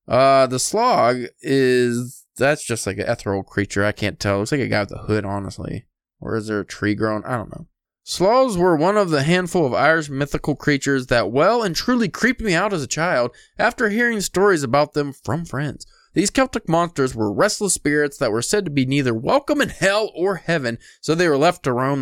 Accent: American